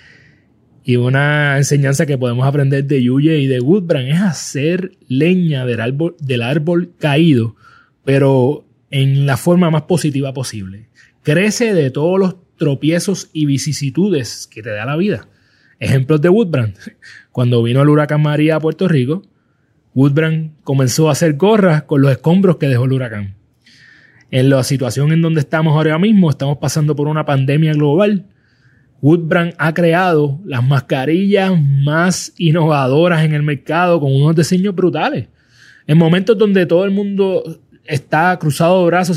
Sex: male